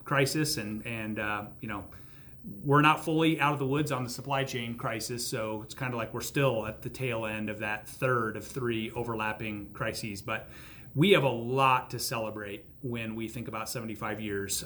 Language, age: English, 30-49